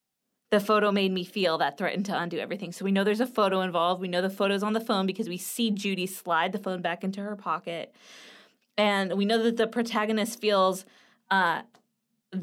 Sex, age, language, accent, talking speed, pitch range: female, 20-39, English, American, 210 wpm, 190-225 Hz